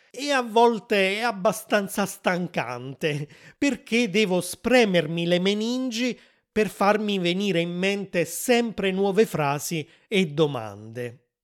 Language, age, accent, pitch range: Italian, 30-49, native, 160-205 Hz